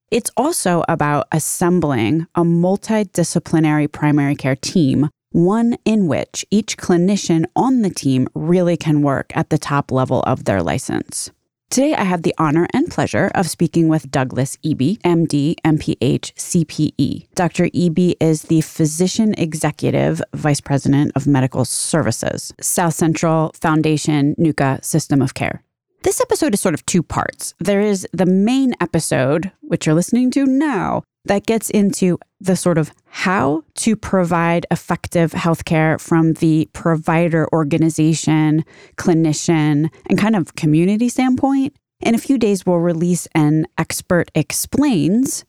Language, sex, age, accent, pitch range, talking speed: English, female, 20-39, American, 150-190 Hz, 140 wpm